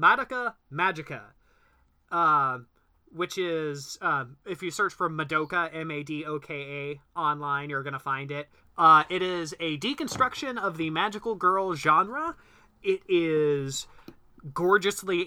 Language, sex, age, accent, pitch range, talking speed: English, male, 30-49, American, 135-180 Hz, 120 wpm